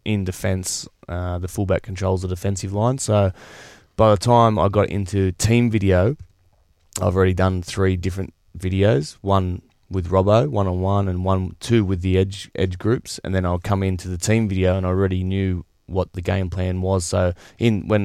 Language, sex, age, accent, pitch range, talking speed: English, male, 20-39, Australian, 90-100 Hz, 195 wpm